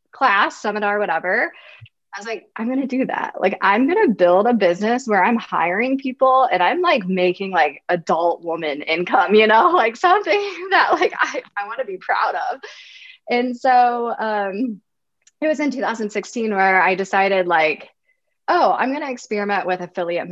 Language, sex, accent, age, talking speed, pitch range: English, female, American, 20-39, 170 wpm, 175-240 Hz